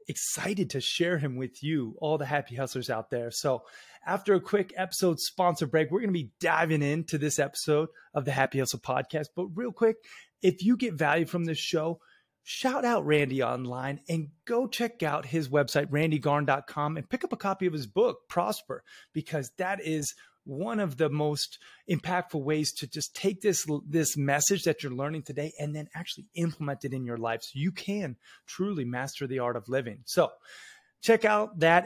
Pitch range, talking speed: 135-180 Hz, 190 wpm